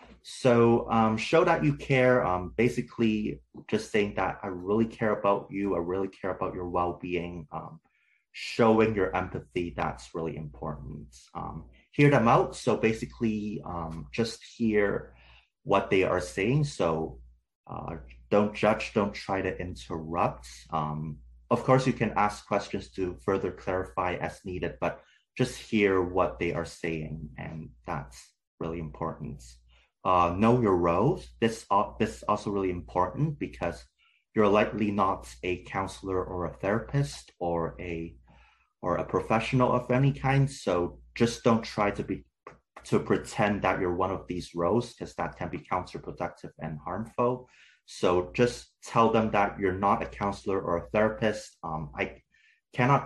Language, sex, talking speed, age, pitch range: English, male, 155 wpm, 30-49, 85-115 Hz